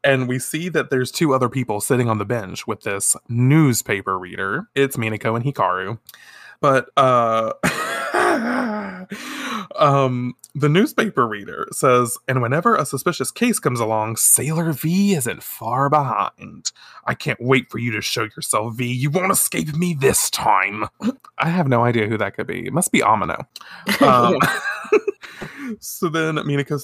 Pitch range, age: 125-200 Hz, 20-39